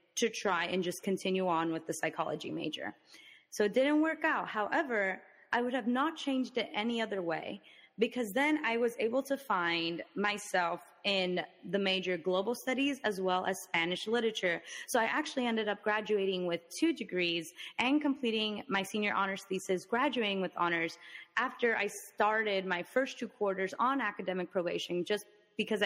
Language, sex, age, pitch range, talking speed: English, female, 20-39, 185-245 Hz, 170 wpm